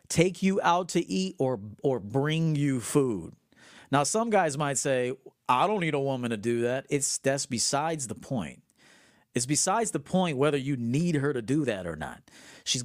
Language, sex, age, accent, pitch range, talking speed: English, male, 40-59, American, 115-145 Hz, 195 wpm